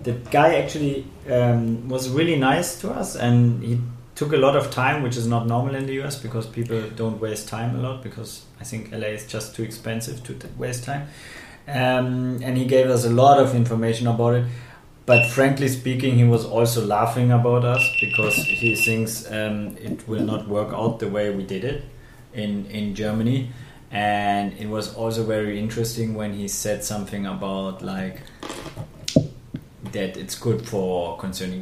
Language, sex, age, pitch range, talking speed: English, male, 30-49, 100-125 Hz, 180 wpm